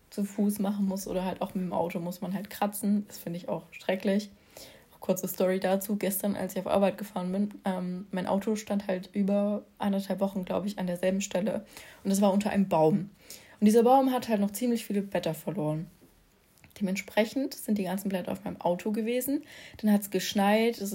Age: 20-39